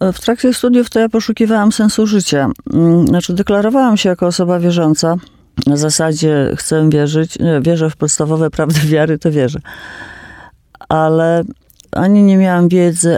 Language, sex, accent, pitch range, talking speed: Polish, female, native, 150-190 Hz, 140 wpm